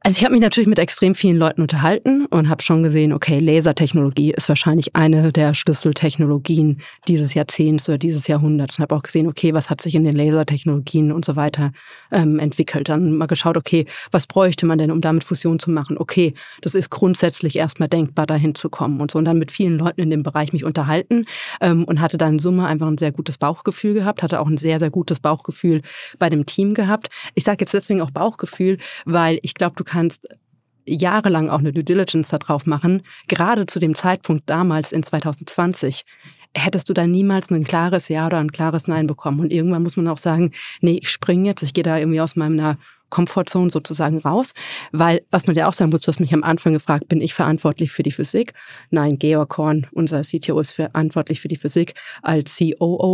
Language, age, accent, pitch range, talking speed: German, 30-49, German, 155-175 Hz, 210 wpm